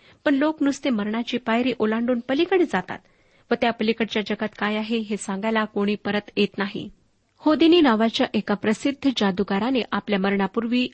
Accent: native